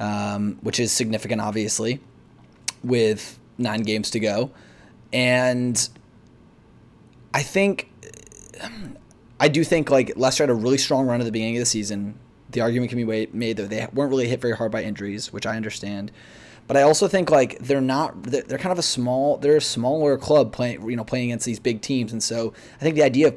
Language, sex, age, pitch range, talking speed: English, male, 20-39, 110-125 Hz, 200 wpm